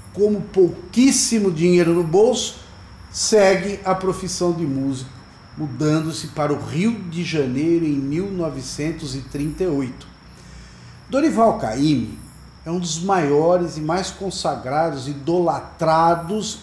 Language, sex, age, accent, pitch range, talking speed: Portuguese, male, 50-69, Brazilian, 145-190 Hz, 100 wpm